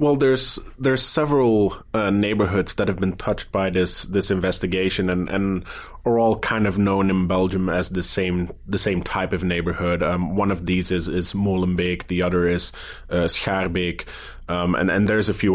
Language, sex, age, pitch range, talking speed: English, male, 20-39, 90-100 Hz, 190 wpm